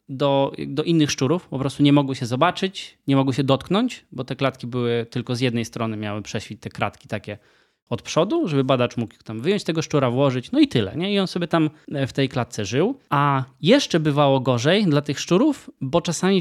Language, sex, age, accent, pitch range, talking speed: Polish, male, 20-39, native, 125-160 Hz, 210 wpm